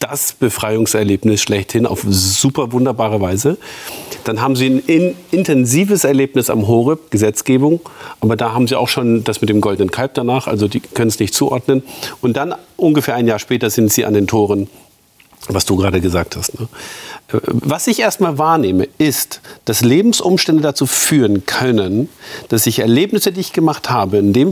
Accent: German